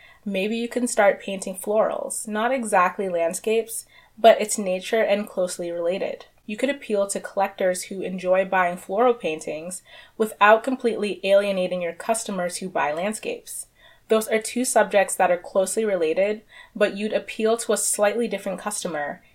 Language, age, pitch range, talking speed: English, 20-39, 180-220 Hz, 150 wpm